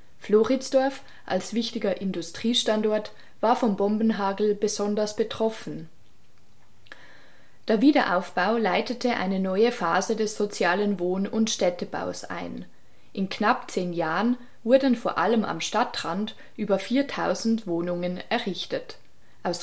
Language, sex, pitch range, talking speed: German, female, 180-235 Hz, 105 wpm